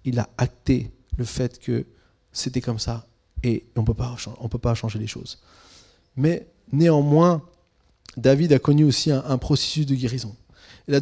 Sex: male